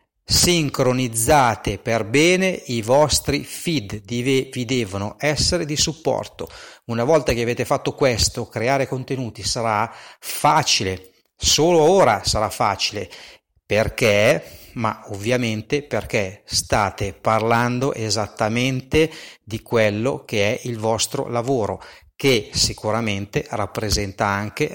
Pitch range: 115-155 Hz